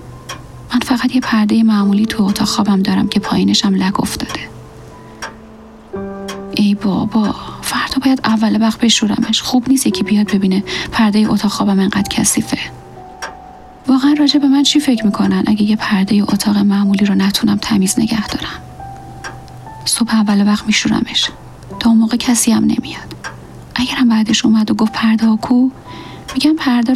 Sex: female